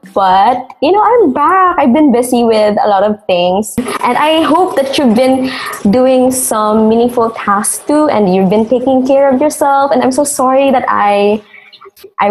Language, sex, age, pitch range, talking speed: English, female, 20-39, 215-300 Hz, 185 wpm